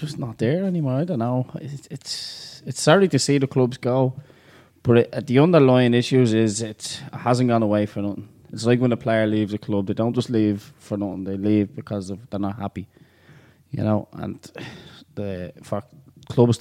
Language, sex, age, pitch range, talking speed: English, male, 20-39, 105-125 Hz, 200 wpm